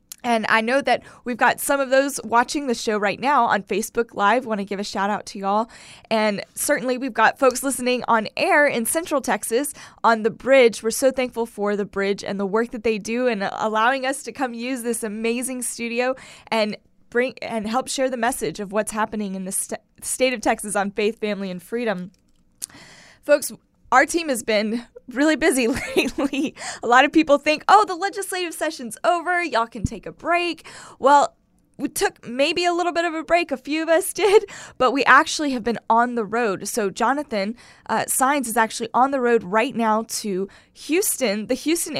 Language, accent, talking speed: English, American, 205 wpm